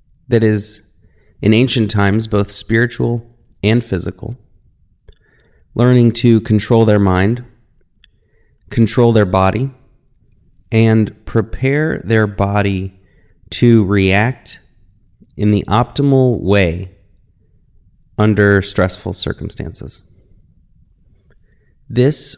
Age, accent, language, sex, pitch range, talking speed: 30-49, American, English, male, 100-115 Hz, 85 wpm